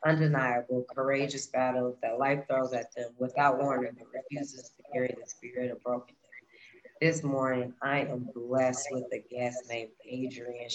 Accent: American